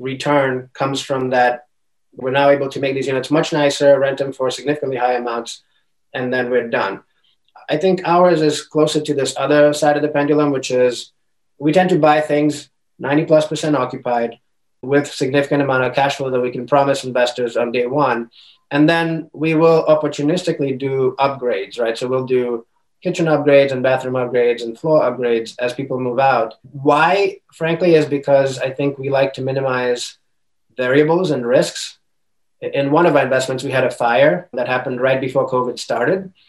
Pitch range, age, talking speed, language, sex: 125-150 Hz, 30-49, 185 wpm, English, male